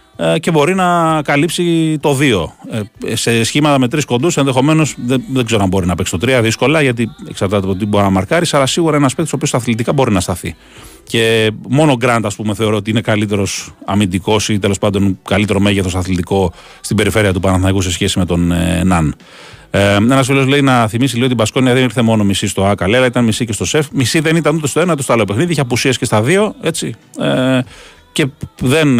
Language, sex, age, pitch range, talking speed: Greek, male, 40-59, 100-135 Hz, 215 wpm